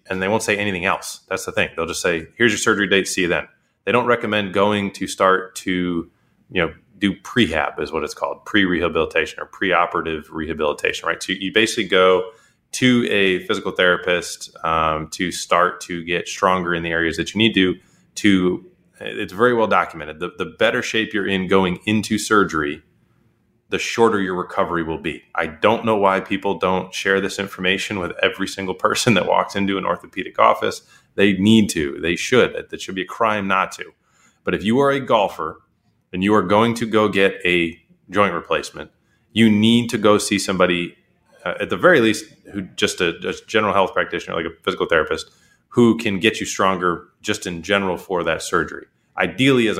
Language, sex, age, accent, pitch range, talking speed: English, male, 20-39, American, 90-110 Hz, 195 wpm